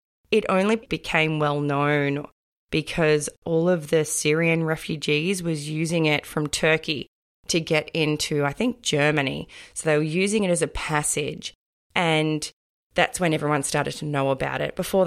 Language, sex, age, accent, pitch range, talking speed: English, female, 20-39, Australian, 150-180 Hz, 155 wpm